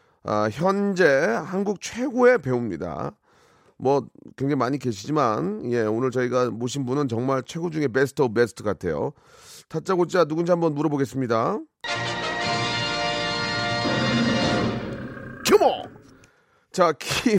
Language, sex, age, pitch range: Korean, male, 30-49, 130-185 Hz